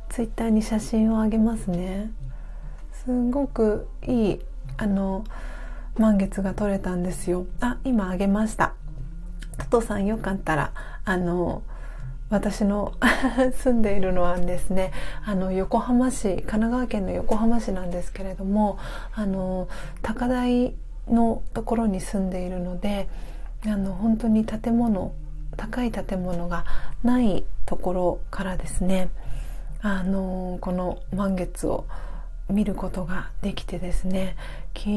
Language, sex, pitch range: Japanese, female, 180-220 Hz